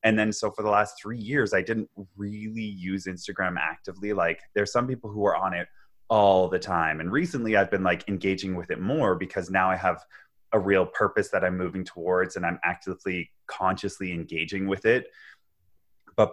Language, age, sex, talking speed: English, 20-39, male, 195 wpm